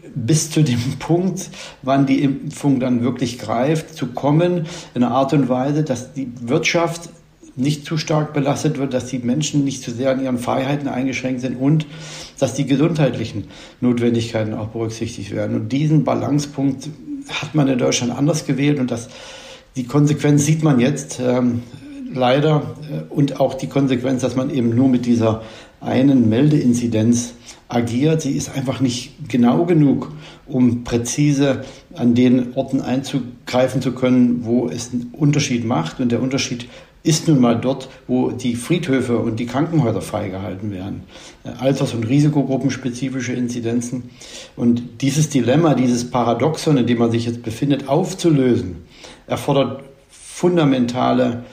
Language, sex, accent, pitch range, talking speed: German, male, German, 120-145 Hz, 150 wpm